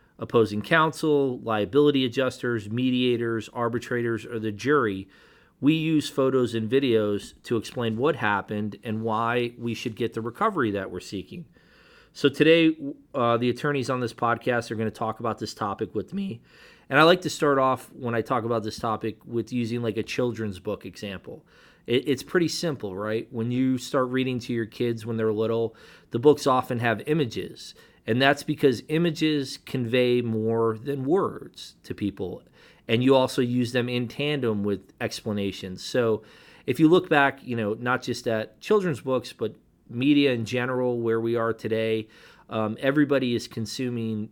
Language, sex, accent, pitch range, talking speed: English, male, American, 110-135 Hz, 170 wpm